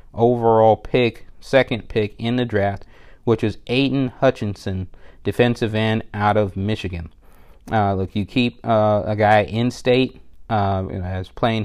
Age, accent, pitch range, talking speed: 30-49, American, 100-115 Hz, 145 wpm